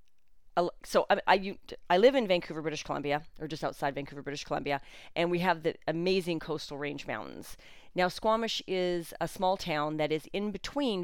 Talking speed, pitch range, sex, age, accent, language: 185 wpm, 150-190 Hz, female, 40-59, American, English